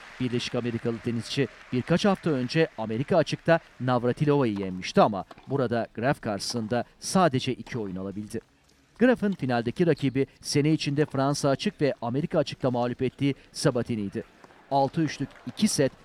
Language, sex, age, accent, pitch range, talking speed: Turkish, male, 40-59, native, 115-145 Hz, 125 wpm